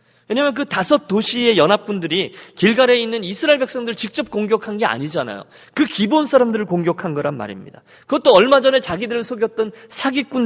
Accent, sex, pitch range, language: native, male, 190-270 Hz, Korean